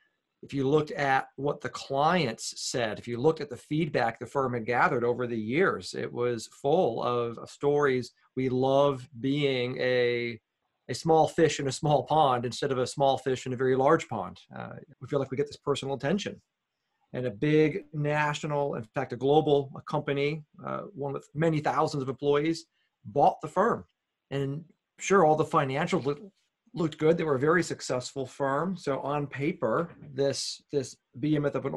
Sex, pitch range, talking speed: male, 130-160 Hz, 185 wpm